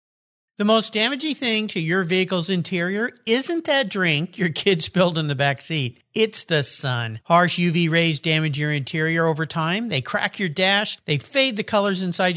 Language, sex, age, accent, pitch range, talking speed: English, male, 50-69, American, 140-210 Hz, 180 wpm